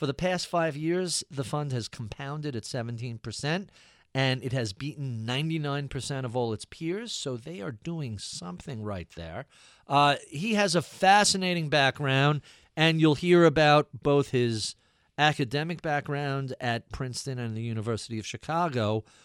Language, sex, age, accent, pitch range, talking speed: English, male, 40-59, American, 115-150 Hz, 155 wpm